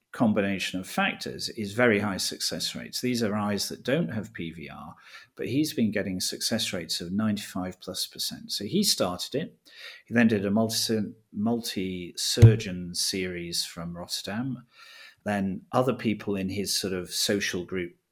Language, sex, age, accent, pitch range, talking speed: English, male, 40-59, British, 90-120 Hz, 155 wpm